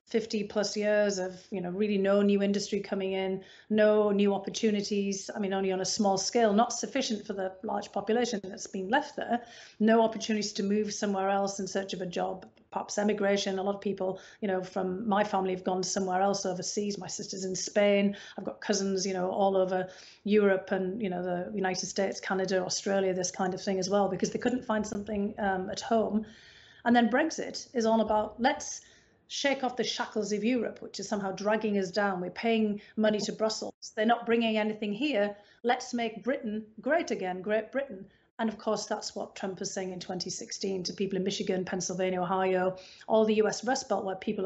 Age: 40-59